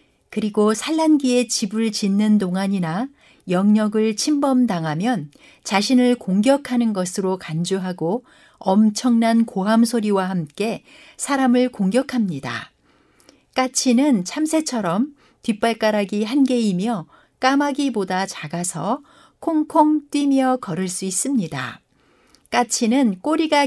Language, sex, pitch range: Korean, female, 190-260 Hz